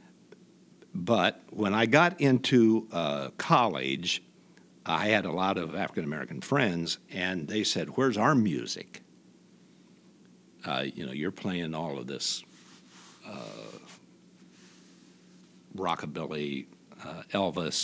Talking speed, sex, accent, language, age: 110 wpm, male, American, English, 60-79